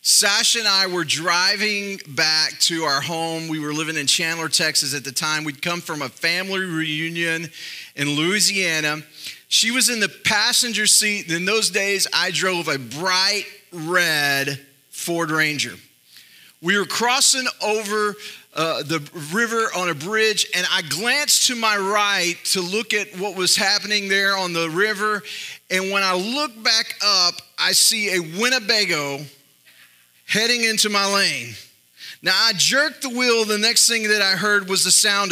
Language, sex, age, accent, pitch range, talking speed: English, male, 30-49, American, 165-210 Hz, 165 wpm